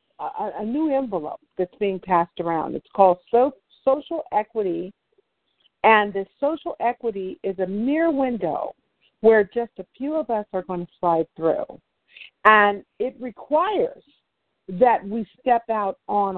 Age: 50-69